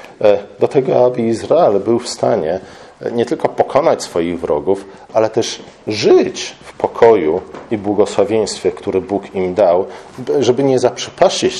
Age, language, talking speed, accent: 40-59, Polish, 135 wpm, native